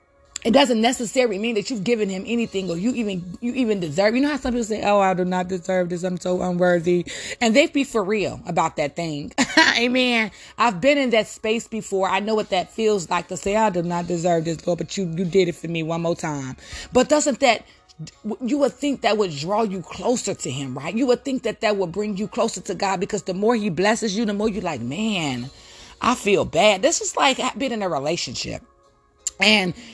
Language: English